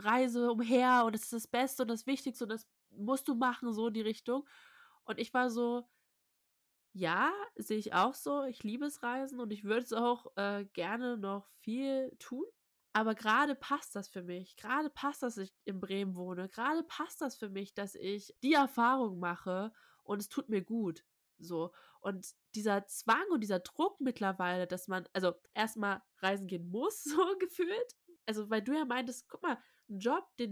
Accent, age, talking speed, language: German, 20-39, 190 wpm, German